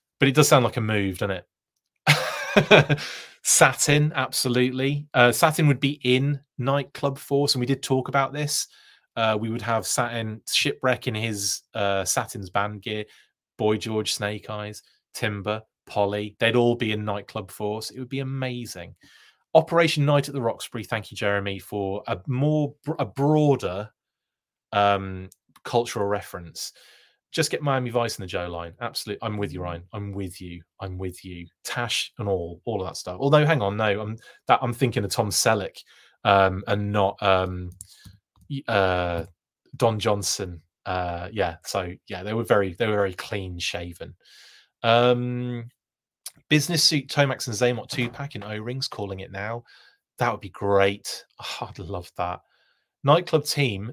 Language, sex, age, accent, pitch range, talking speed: English, male, 30-49, British, 100-135 Hz, 165 wpm